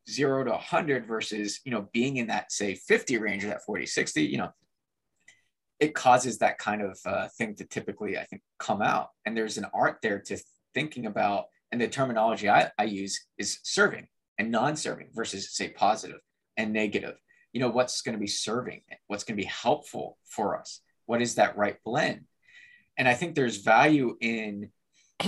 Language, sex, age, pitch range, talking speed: English, male, 20-39, 105-130 Hz, 190 wpm